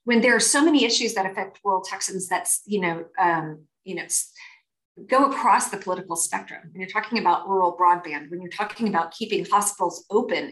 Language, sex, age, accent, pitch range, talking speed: English, female, 30-49, American, 185-245 Hz, 195 wpm